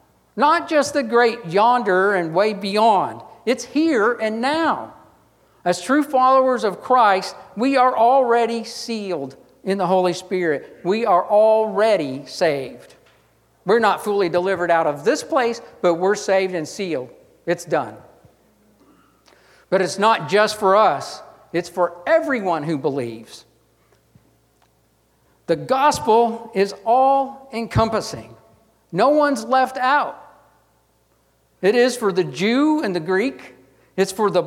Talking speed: 130 wpm